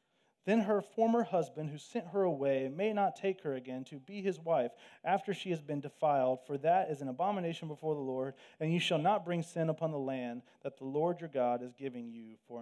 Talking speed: 230 wpm